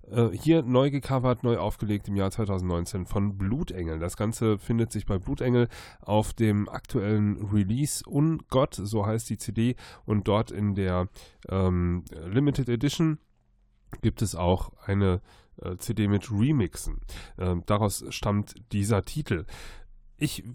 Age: 10-29